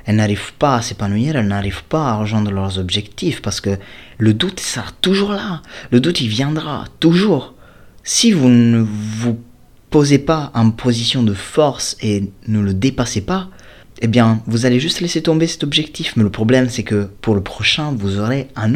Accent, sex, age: French, male, 30-49